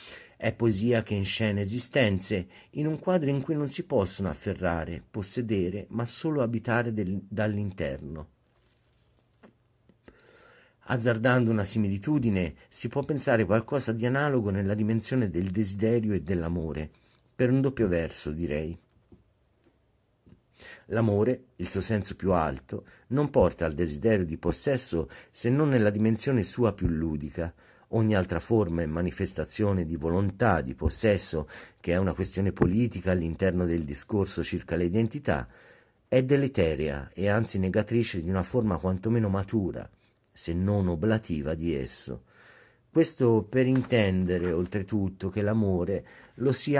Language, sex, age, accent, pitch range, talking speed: Italian, male, 50-69, native, 90-120 Hz, 130 wpm